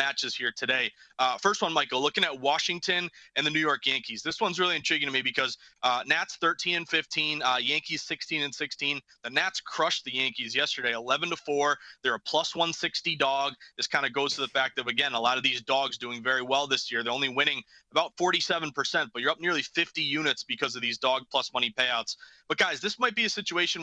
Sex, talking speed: male, 225 wpm